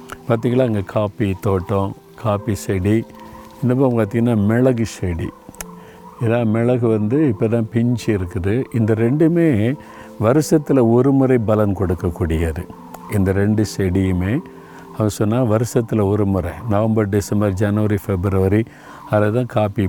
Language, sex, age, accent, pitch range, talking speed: Tamil, male, 50-69, native, 100-125 Hz, 110 wpm